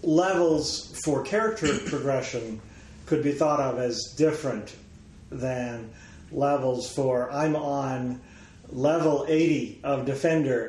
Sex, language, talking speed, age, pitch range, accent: male, English, 105 wpm, 40-59, 115-150 Hz, American